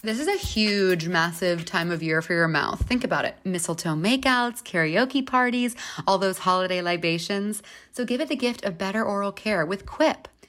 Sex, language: female, English